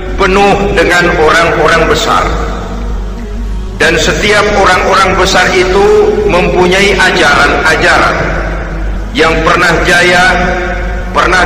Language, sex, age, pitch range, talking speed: Indonesian, male, 50-69, 175-215 Hz, 80 wpm